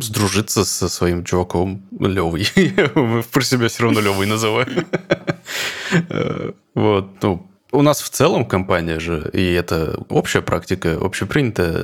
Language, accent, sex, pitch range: Russian, native, male, 90-110 Hz